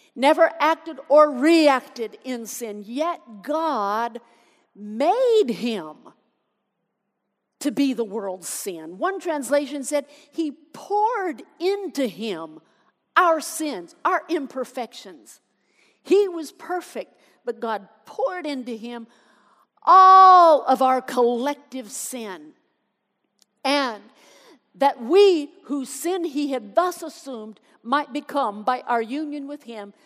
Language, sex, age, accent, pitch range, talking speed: English, female, 50-69, American, 235-320 Hz, 110 wpm